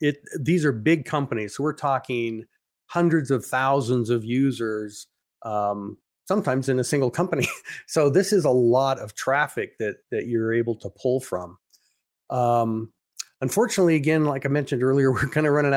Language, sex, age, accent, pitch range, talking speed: English, male, 40-59, American, 120-155 Hz, 170 wpm